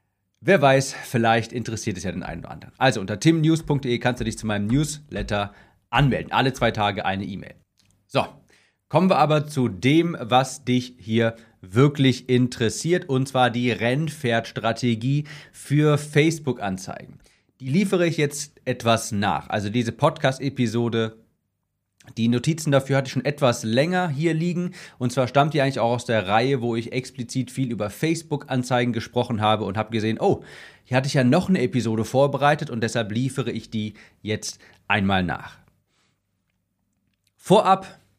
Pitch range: 115-145 Hz